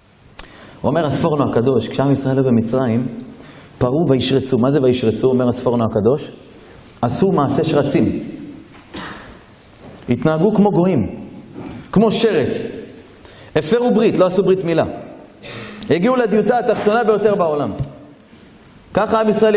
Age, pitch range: 30-49, 145-225 Hz